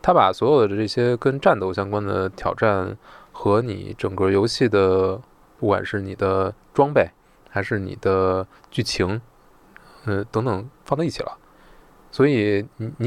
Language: Chinese